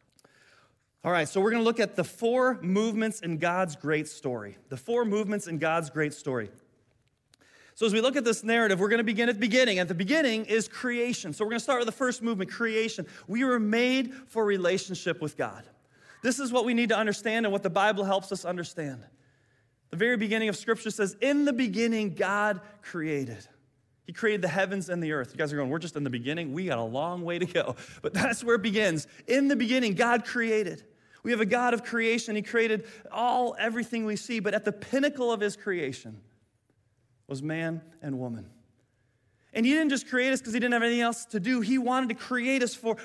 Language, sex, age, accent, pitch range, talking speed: English, male, 30-49, American, 165-235 Hz, 220 wpm